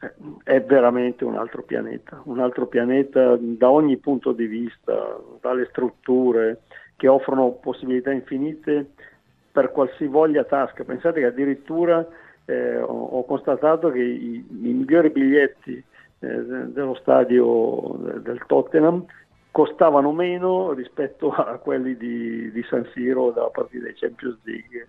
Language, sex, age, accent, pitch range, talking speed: Italian, male, 50-69, native, 125-155 Hz, 130 wpm